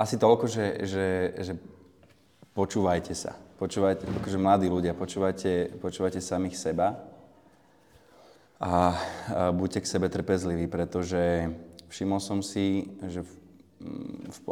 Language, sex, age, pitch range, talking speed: Slovak, male, 20-39, 90-100 Hz, 110 wpm